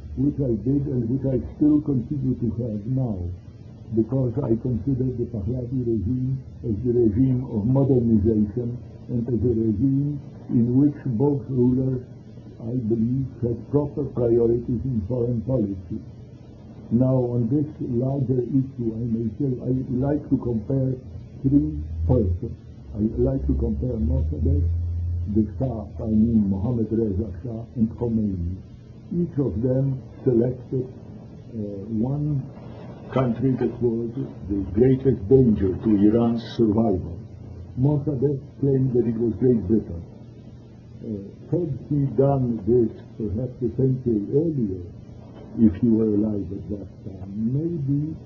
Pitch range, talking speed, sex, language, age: 110-130 Hz, 130 wpm, male, Persian, 60-79